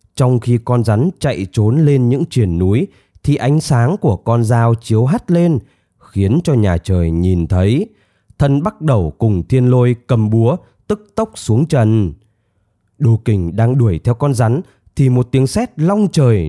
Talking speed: 180 wpm